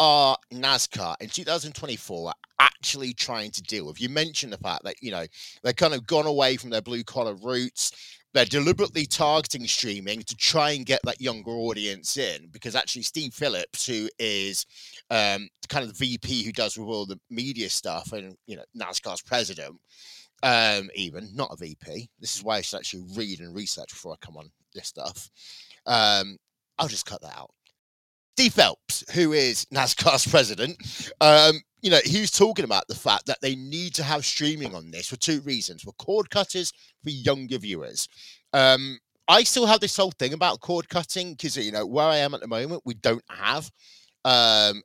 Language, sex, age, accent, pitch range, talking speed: English, male, 30-49, British, 115-155 Hz, 185 wpm